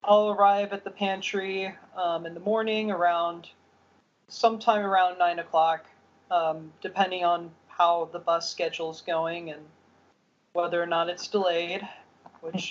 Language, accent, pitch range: English, American, 175-205 Hz